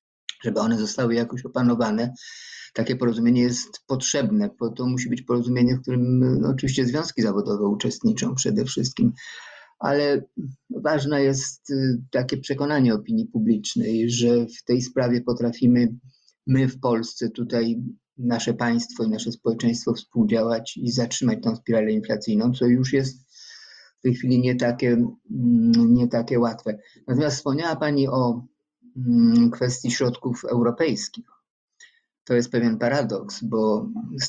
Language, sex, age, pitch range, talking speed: Polish, male, 50-69, 115-135 Hz, 125 wpm